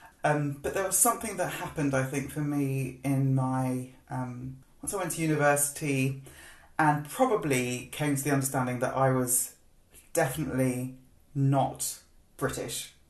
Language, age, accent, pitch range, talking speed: English, 20-39, British, 130-145 Hz, 140 wpm